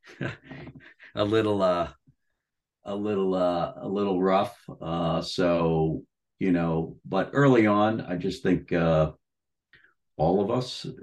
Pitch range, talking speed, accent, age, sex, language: 80-95 Hz, 125 wpm, American, 50-69, male, English